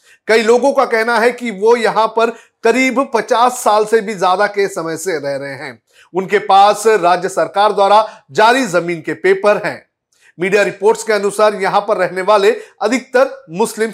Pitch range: 175-230 Hz